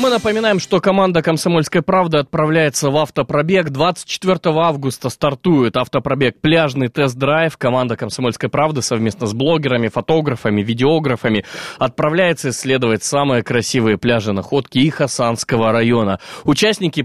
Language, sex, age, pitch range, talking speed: Russian, male, 20-39, 120-155 Hz, 115 wpm